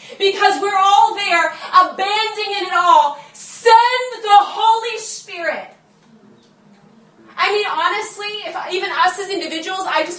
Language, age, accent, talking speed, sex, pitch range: English, 30-49, American, 125 wpm, female, 245-365 Hz